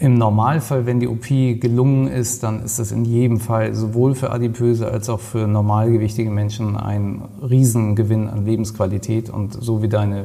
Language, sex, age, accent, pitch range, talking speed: German, male, 40-59, German, 110-125 Hz, 170 wpm